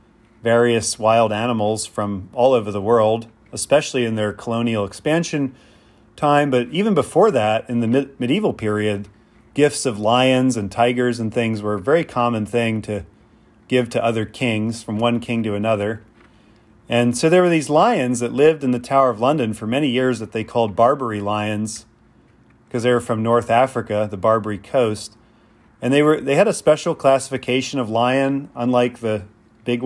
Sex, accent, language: male, American, English